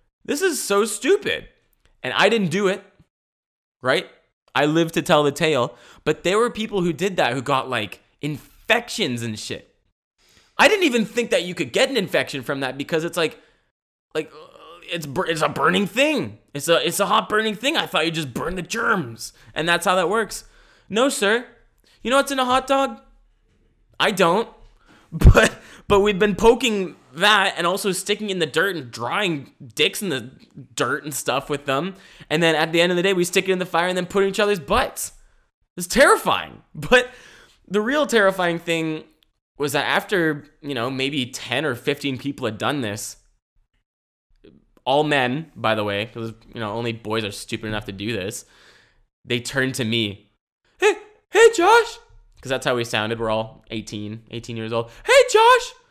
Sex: male